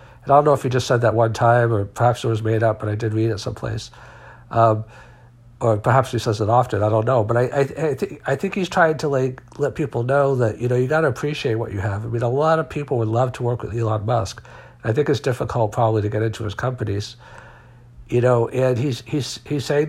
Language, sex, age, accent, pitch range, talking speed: English, male, 60-79, American, 110-125 Hz, 265 wpm